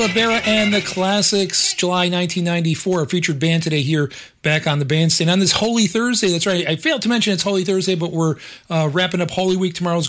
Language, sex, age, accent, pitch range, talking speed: English, male, 40-59, American, 140-185 Hz, 215 wpm